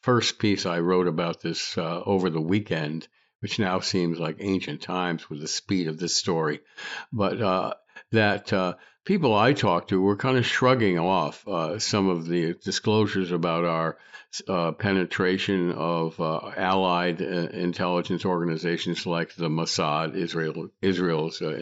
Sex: male